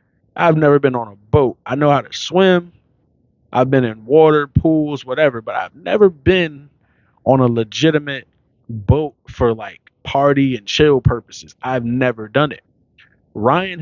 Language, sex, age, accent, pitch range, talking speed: English, male, 20-39, American, 115-150 Hz, 155 wpm